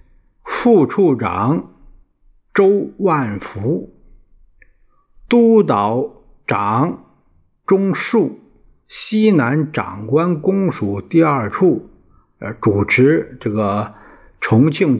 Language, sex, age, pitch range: Chinese, male, 50-69, 105-175 Hz